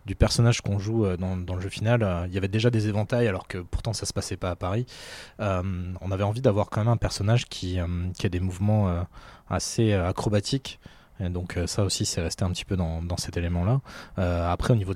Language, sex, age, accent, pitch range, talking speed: French, male, 20-39, French, 90-110 Hz, 240 wpm